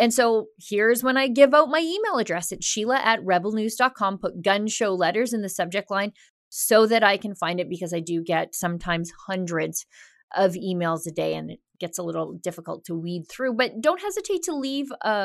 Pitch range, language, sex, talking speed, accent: 180-230 Hz, English, female, 210 wpm, American